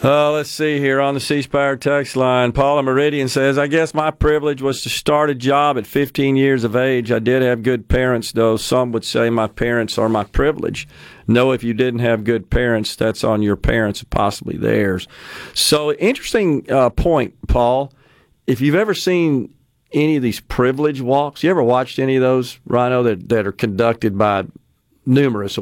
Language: English